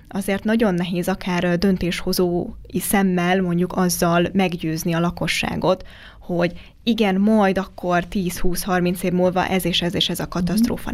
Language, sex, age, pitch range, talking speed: Hungarian, female, 20-39, 170-195 Hz, 135 wpm